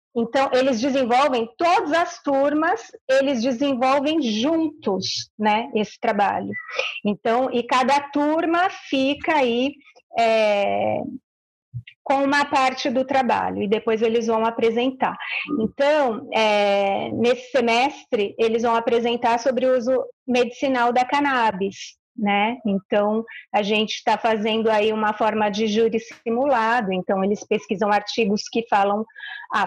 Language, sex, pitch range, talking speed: Portuguese, female, 225-275 Hz, 120 wpm